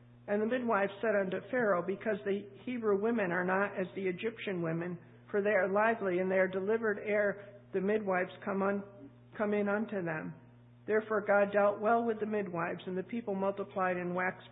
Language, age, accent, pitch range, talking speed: English, 50-69, American, 170-210 Hz, 185 wpm